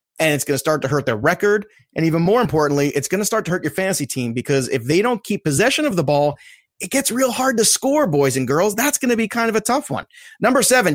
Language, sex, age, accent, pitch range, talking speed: English, male, 30-49, American, 145-205 Hz, 280 wpm